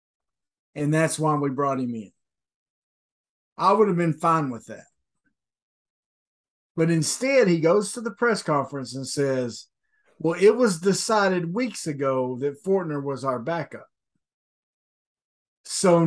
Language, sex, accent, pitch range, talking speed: English, male, American, 135-190 Hz, 135 wpm